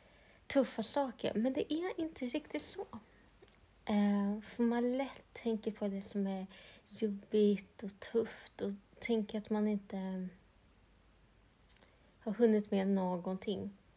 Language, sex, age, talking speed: Swedish, female, 30-49, 125 wpm